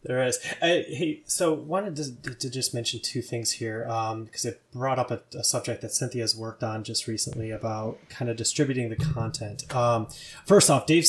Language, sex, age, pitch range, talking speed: English, male, 20-39, 115-130 Hz, 205 wpm